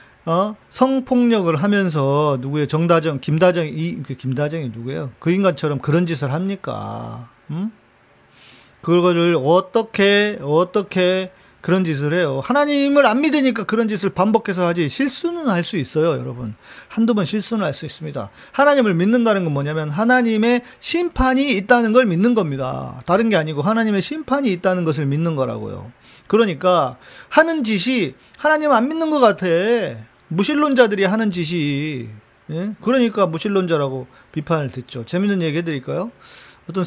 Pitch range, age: 135-215 Hz, 40-59